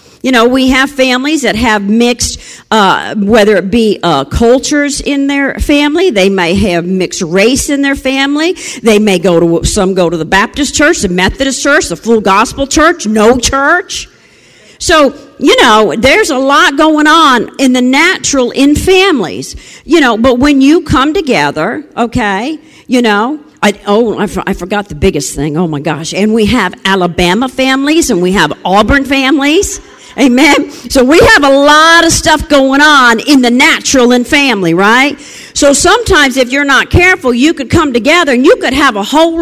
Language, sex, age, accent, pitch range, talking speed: English, female, 50-69, American, 220-295 Hz, 180 wpm